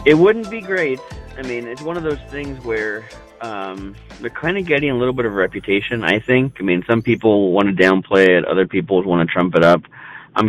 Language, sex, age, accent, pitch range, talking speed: English, male, 30-49, American, 95-130 Hz, 235 wpm